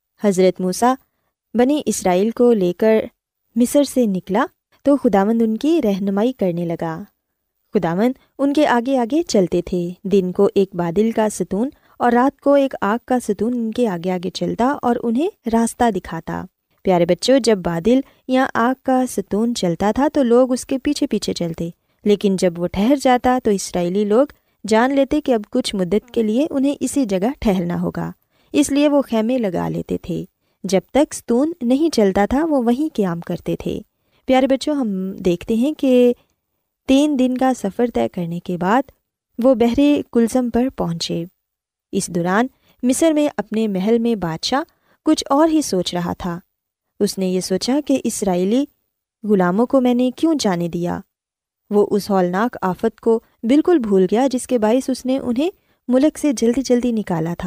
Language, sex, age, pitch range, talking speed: Urdu, female, 20-39, 190-260 Hz, 175 wpm